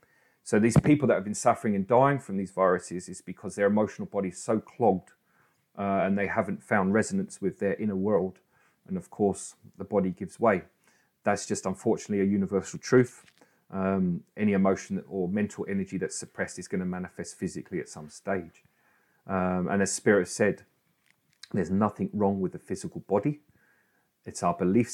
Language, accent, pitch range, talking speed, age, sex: English, British, 95-115 Hz, 180 wpm, 40-59, male